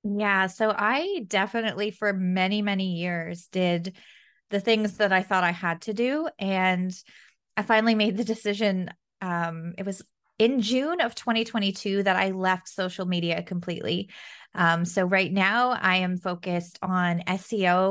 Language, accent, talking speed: English, American, 155 wpm